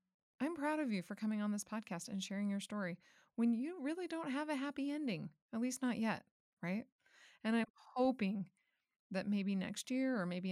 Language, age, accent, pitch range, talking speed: English, 20-39, American, 185-240 Hz, 200 wpm